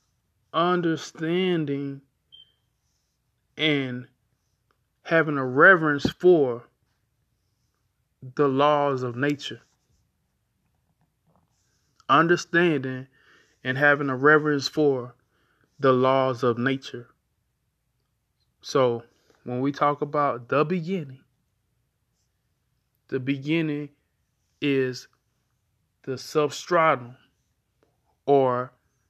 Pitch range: 120-145 Hz